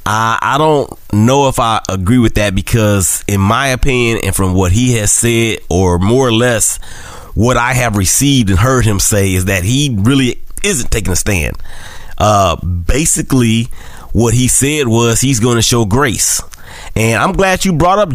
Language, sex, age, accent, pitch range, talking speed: English, male, 30-49, American, 100-140 Hz, 180 wpm